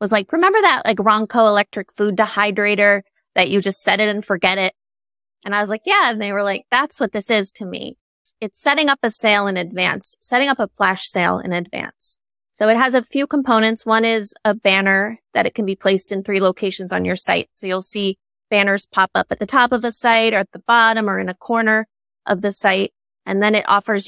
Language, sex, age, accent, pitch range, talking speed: English, female, 30-49, American, 195-230 Hz, 235 wpm